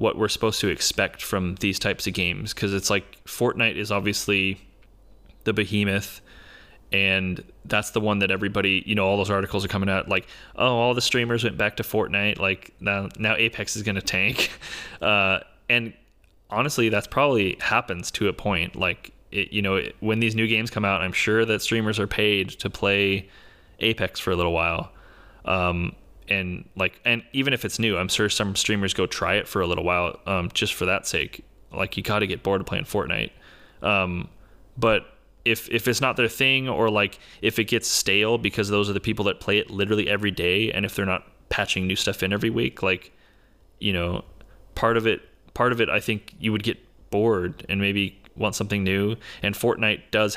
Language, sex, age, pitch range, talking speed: English, male, 20-39, 95-110 Hz, 205 wpm